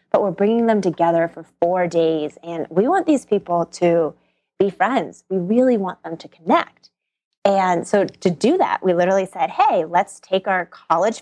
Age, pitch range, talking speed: 20-39, 170-210 Hz, 185 wpm